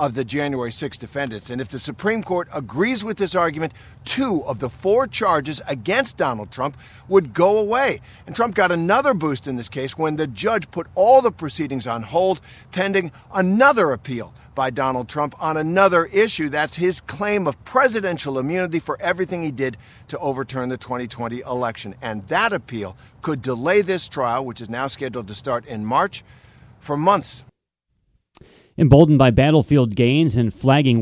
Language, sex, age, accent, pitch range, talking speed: English, male, 50-69, American, 115-145 Hz, 170 wpm